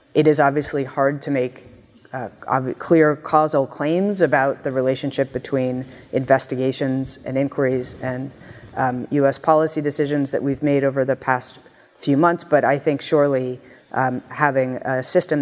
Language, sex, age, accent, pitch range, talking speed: English, female, 30-49, American, 130-160 Hz, 150 wpm